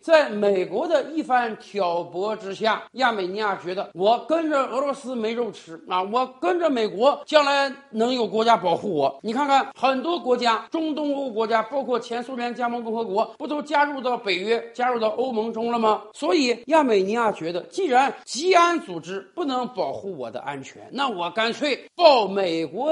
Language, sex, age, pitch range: Chinese, male, 50-69, 205-290 Hz